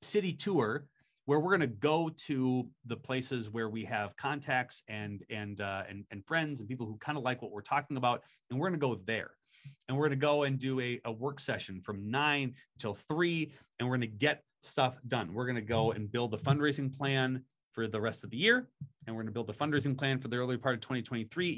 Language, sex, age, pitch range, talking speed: English, male, 30-49, 120-160 Hz, 230 wpm